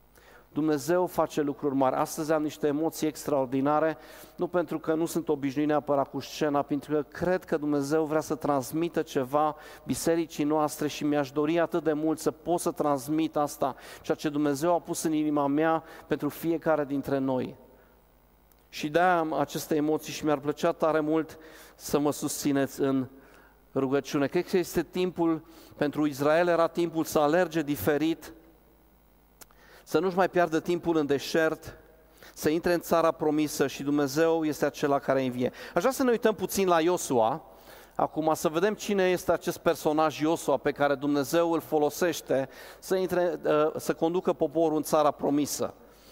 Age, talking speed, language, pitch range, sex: 40-59, 165 wpm, Romanian, 145-165 Hz, male